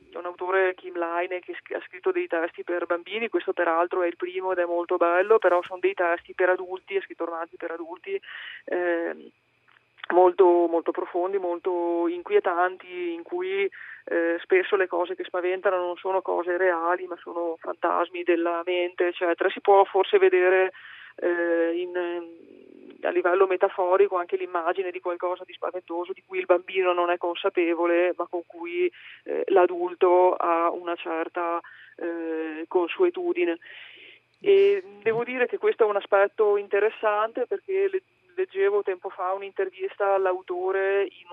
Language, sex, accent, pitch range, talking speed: Italian, female, native, 175-210 Hz, 150 wpm